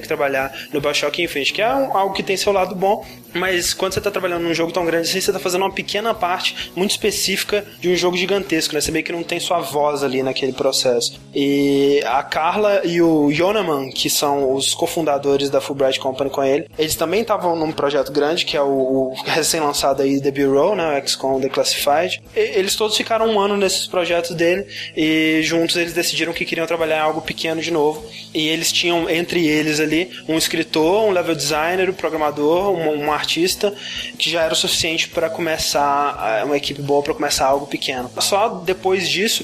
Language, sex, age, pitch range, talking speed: Portuguese, male, 20-39, 145-185 Hz, 205 wpm